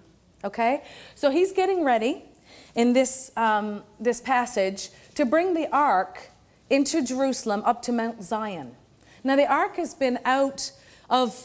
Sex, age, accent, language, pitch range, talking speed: female, 40-59, American, English, 210-275 Hz, 140 wpm